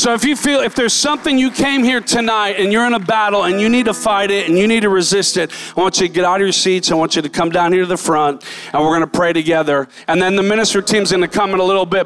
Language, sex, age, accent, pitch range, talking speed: English, male, 40-59, American, 200-265 Hz, 325 wpm